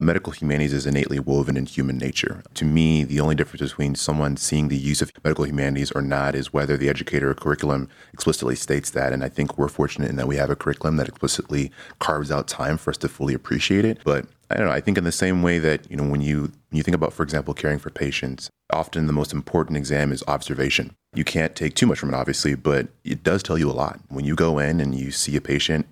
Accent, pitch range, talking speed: American, 70-75 Hz, 250 wpm